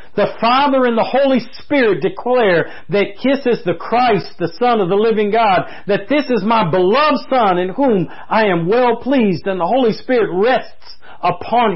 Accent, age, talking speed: American, 50-69, 185 wpm